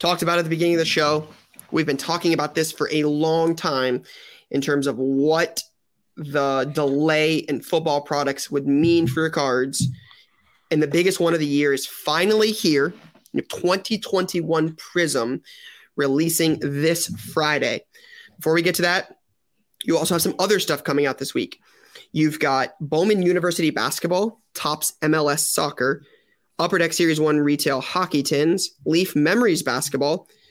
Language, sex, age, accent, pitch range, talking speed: English, male, 20-39, American, 145-175 Hz, 155 wpm